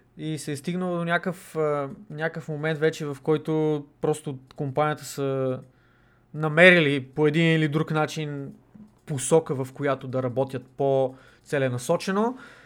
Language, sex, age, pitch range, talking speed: Bulgarian, male, 20-39, 135-175 Hz, 120 wpm